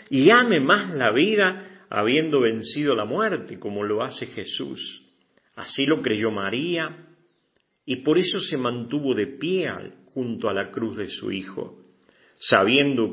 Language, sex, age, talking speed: English, male, 50-69, 145 wpm